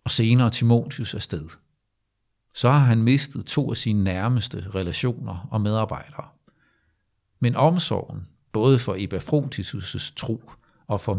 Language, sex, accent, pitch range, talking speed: Danish, male, native, 100-130 Hz, 125 wpm